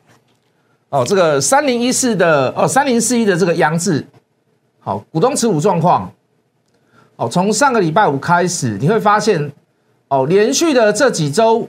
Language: Chinese